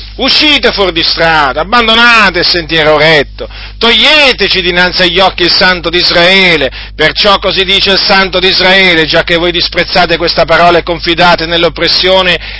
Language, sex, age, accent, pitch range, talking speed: Italian, male, 40-59, native, 150-190 Hz, 150 wpm